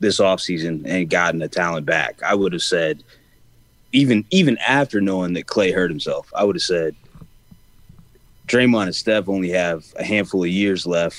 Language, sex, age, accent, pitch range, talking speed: English, male, 30-49, American, 90-115 Hz, 175 wpm